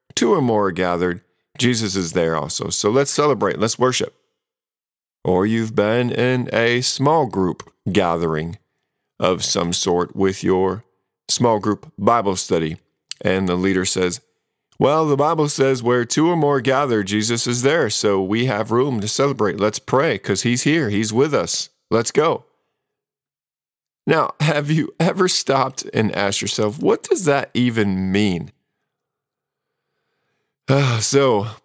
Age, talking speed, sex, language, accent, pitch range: 50-69, 145 wpm, male, English, American, 95-135 Hz